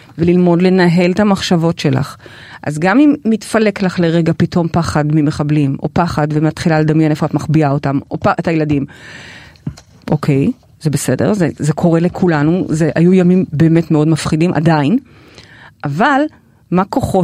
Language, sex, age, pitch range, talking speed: Hebrew, female, 30-49, 155-220 Hz, 145 wpm